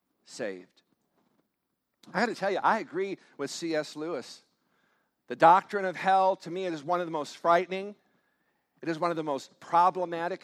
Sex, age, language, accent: male, 50-69, English, American